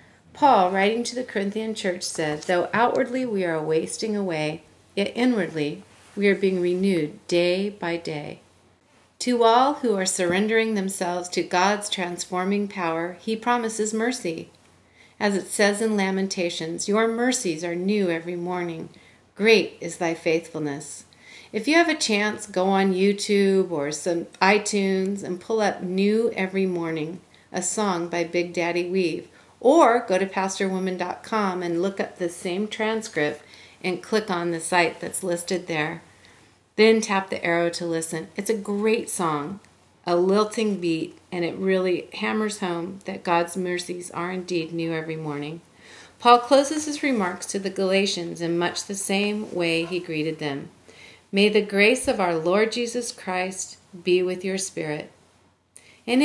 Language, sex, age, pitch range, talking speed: English, female, 40-59, 170-210 Hz, 155 wpm